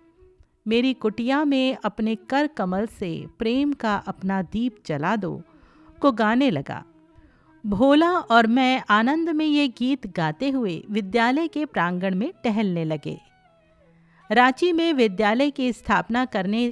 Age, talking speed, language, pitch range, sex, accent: 50-69, 135 wpm, Hindi, 195-280 Hz, female, native